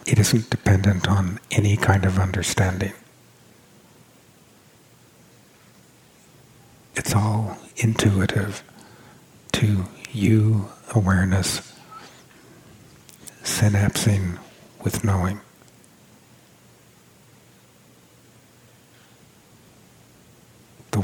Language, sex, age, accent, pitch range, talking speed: English, male, 50-69, American, 95-110 Hz, 50 wpm